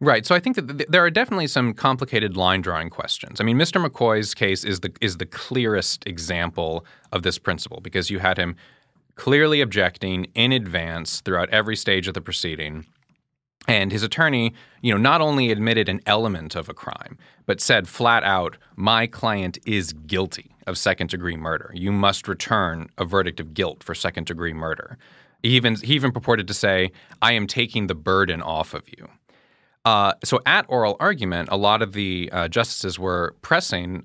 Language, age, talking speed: English, 30-49, 180 wpm